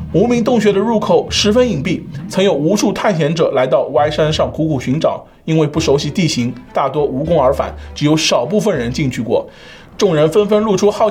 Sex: male